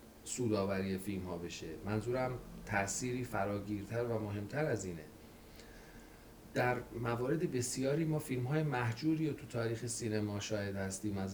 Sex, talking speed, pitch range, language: male, 115 wpm, 105-130 Hz, Persian